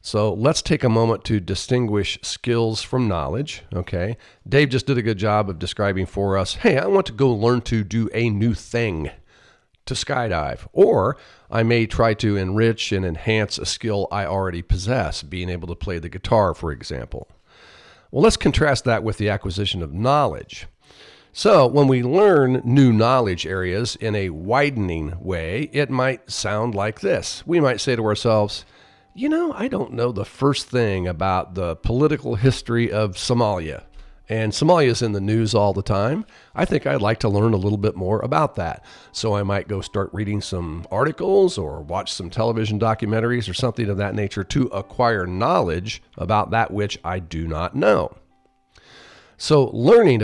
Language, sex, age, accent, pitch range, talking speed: English, male, 50-69, American, 95-120 Hz, 180 wpm